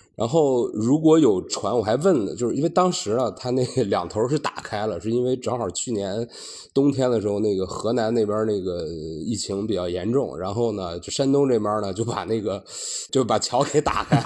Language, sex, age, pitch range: Chinese, male, 20-39, 95-140 Hz